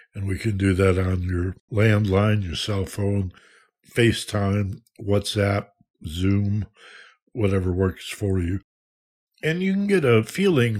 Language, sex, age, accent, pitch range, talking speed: English, male, 60-79, American, 90-110 Hz, 135 wpm